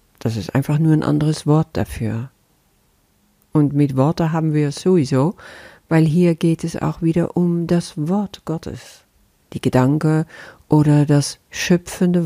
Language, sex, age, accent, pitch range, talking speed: German, female, 50-69, German, 135-170 Hz, 145 wpm